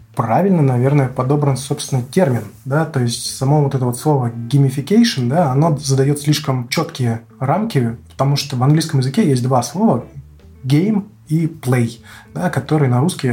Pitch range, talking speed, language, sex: 120-145 Hz, 160 wpm, Russian, male